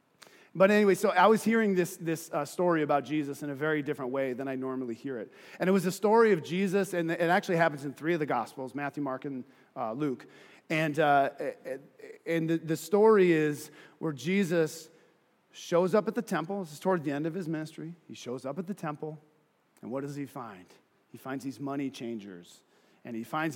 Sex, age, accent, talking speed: male, 40-59, American, 210 wpm